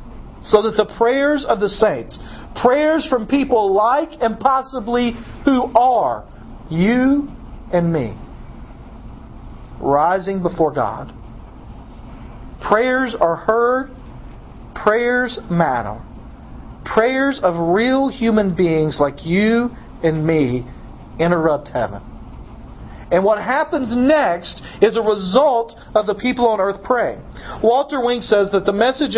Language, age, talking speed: English, 40-59, 115 wpm